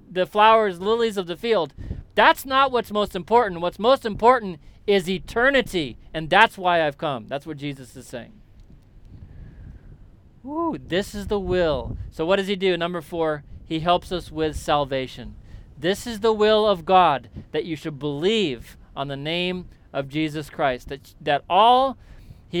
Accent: American